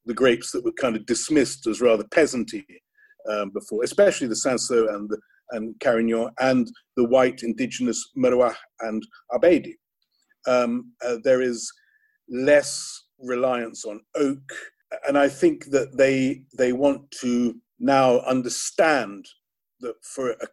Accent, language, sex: British, English, male